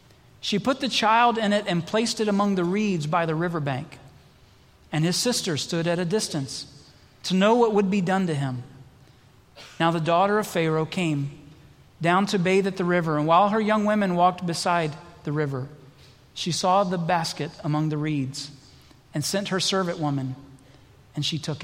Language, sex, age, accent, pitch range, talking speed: English, male, 40-59, American, 150-210 Hz, 185 wpm